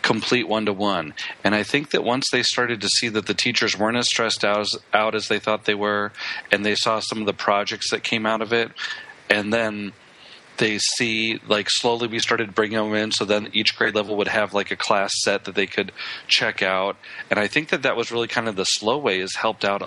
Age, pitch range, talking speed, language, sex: 40-59, 100-115 Hz, 240 wpm, English, male